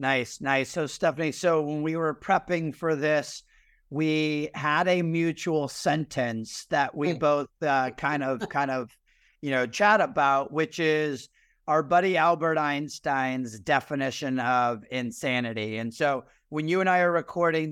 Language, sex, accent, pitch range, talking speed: English, male, American, 140-165 Hz, 150 wpm